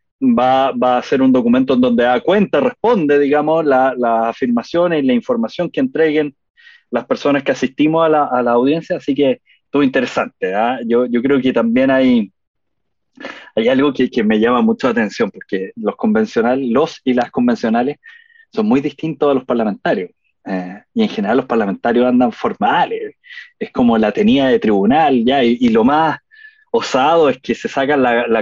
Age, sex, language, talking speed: 20-39, male, Spanish, 185 wpm